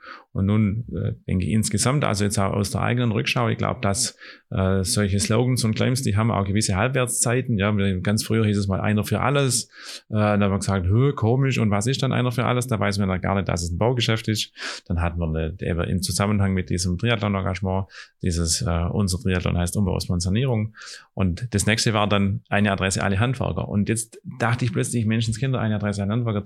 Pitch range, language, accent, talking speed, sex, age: 100-120 Hz, German, German, 220 wpm, male, 30-49